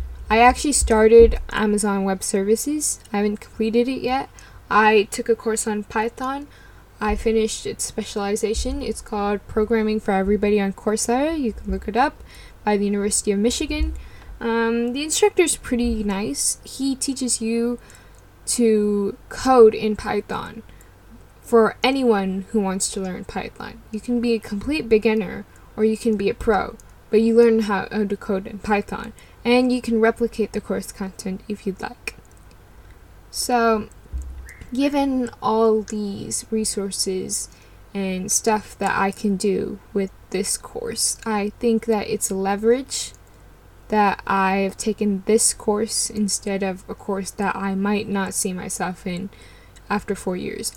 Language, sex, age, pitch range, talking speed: English, female, 10-29, 195-230 Hz, 150 wpm